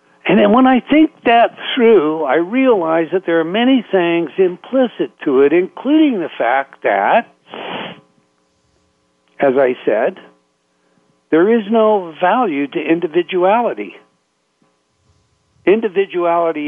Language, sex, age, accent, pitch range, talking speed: English, male, 60-79, American, 150-220 Hz, 110 wpm